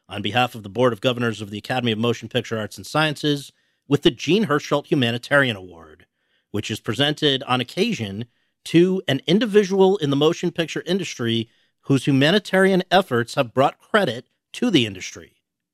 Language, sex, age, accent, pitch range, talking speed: English, male, 50-69, American, 120-170 Hz, 170 wpm